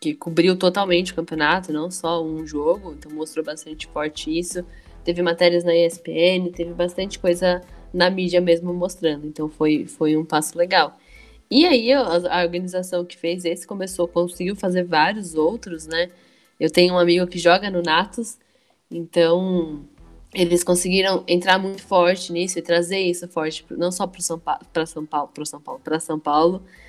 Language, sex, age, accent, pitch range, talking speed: Portuguese, female, 10-29, Brazilian, 170-200 Hz, 170 wpm